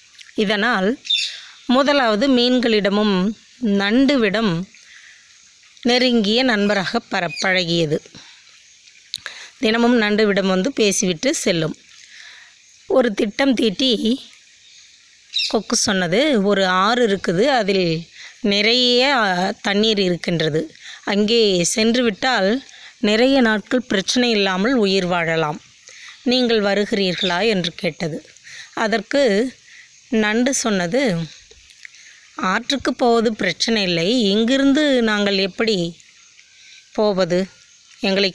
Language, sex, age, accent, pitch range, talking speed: Tamil, female, 20-39, native, 190-245 Hz, 75 wpm